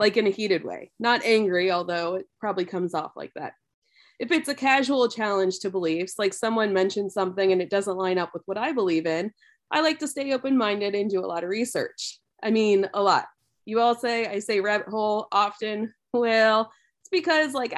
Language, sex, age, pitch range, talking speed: English, female, 20-39, 195-245 Hz, 210 wpm